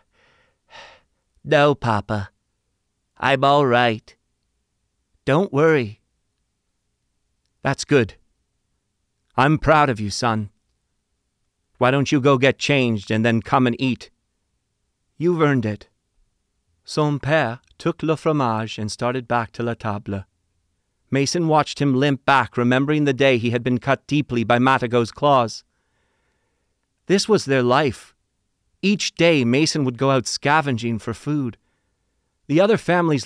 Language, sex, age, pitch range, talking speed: English, male, 40-59, 115-150 Hz, 130 wpm